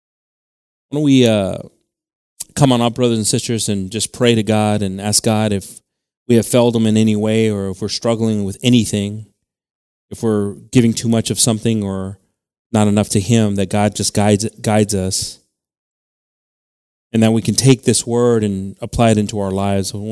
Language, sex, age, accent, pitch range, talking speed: English, male, 30-49, American, 105-130 Hz, 190 wpm